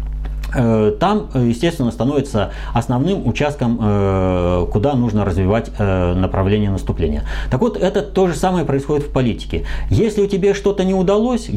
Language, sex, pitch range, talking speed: Russian, male, 100-140 Hz, 130 wpm